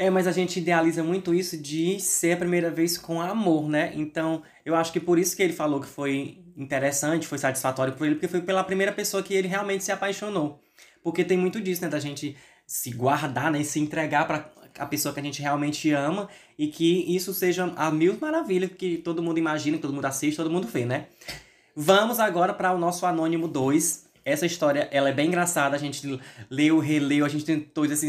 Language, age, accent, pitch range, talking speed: Portuguese, 20-39, Brazilian, 150-180 Hz, 220 wpm